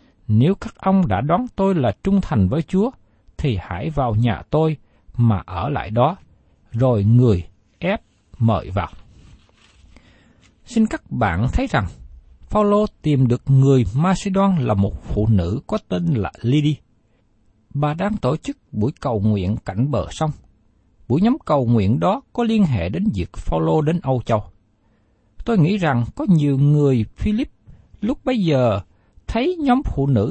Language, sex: Vietnamese, male